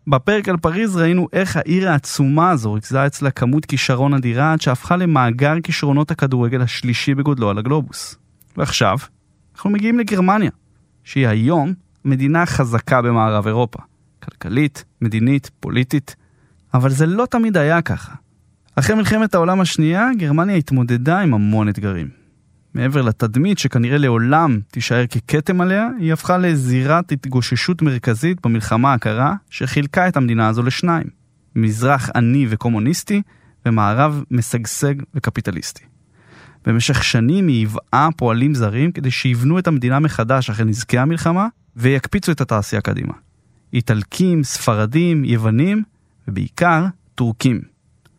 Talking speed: 120 wpm